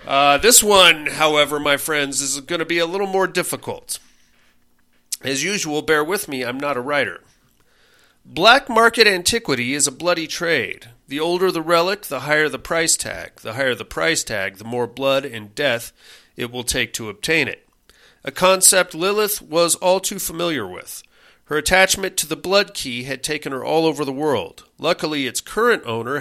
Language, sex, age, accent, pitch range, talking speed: English, male, 40-59, American, 125-170 Hz, 185 wpm